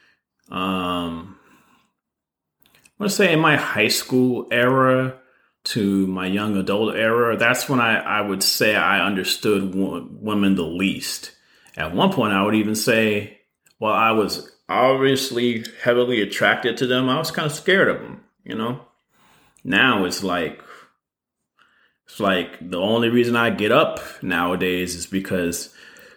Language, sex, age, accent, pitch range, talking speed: English, male, 30-49, American, 95-125 Hz, 145 wpm